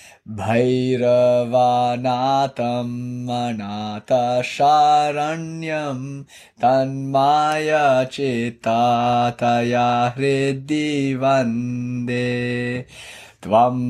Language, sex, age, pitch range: English, male, 20-39, 120-140 Hz